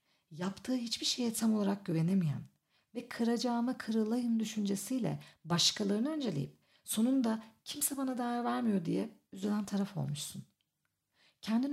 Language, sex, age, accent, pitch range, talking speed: Turkish, female, 50-69, native, 180-240 Hz, 115 wpm